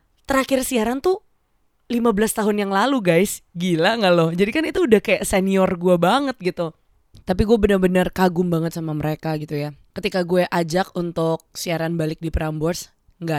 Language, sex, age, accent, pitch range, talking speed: Indonesian, female, 20-39, native, 170-210 Hz, 170 wpm